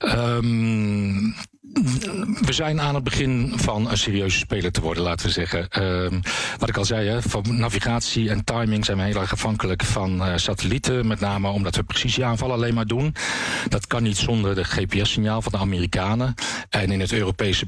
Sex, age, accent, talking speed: male, 40-59, Dutch, 175 wpm